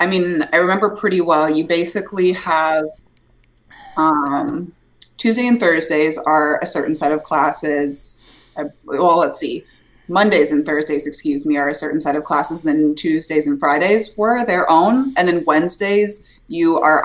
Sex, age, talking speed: female, 20-39, 160 wpm